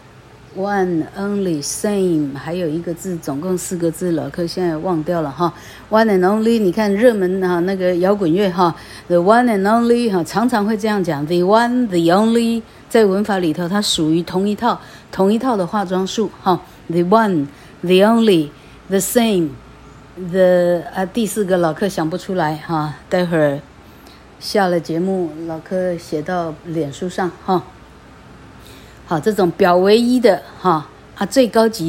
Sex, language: female, Chinese